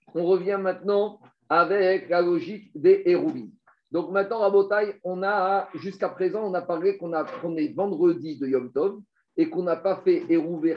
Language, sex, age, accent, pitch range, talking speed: French, male, 50-69, French, 165-230 Hz, 180 wpm